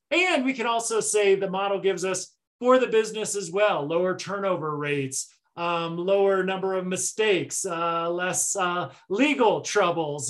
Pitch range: 170-210 Hz